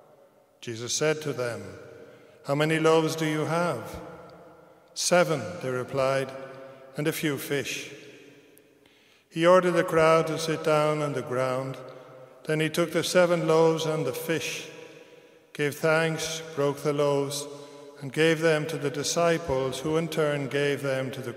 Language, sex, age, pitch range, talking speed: English, male, 50-69, 145-165 Hz, 150 wpm